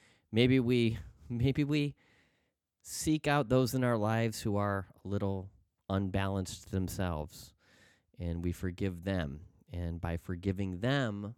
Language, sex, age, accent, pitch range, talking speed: English, male, 30-49, American, 95-125 Hz, 125 wpm